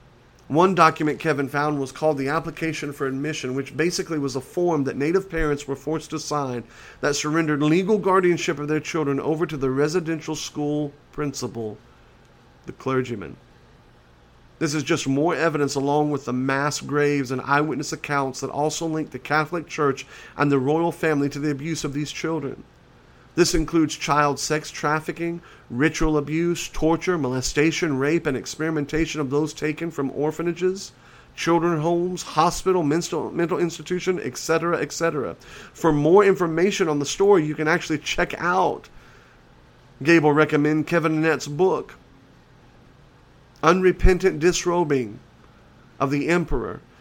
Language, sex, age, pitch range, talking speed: English, male, 40-59, 140-165 Hz, 145 wpm